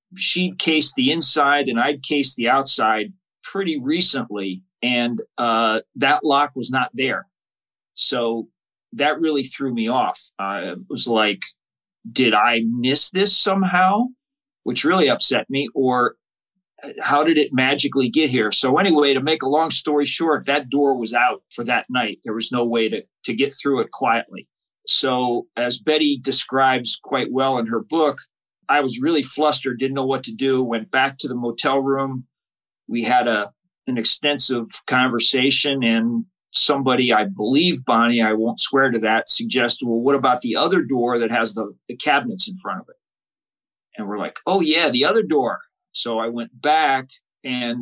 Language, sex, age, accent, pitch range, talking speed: English, male, 40-59, American, 120-150 Hz, 170 wpm